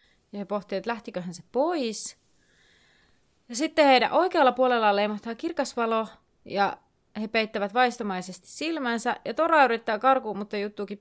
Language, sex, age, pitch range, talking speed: Finnish, female, 30-49, 190-235 Hz, 140 wpm